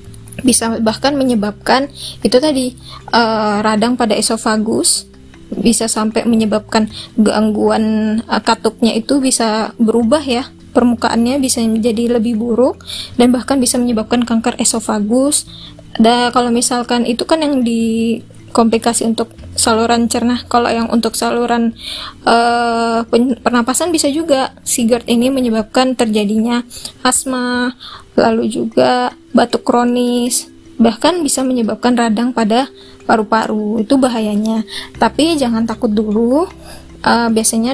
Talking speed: 115 wpm